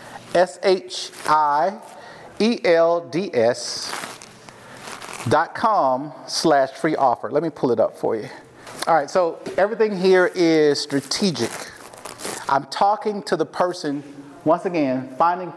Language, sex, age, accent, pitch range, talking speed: English, male, 40-59, American, 140-175 Hz, 110 wpm